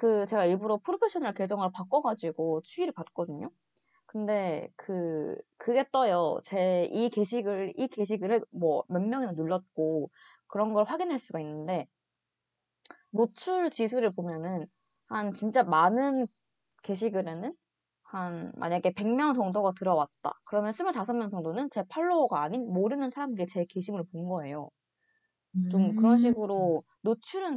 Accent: native